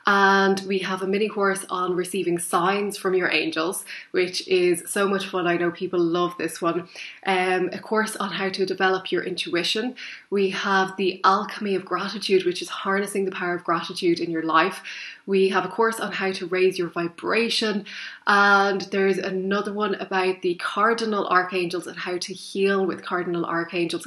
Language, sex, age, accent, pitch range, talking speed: English, female, 20-39, Irish, 185-205 Hz, 180 wpm